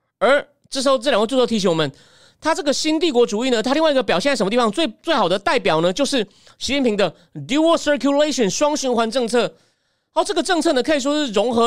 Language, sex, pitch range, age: Chinese, male, 205-270 Hz, 30-49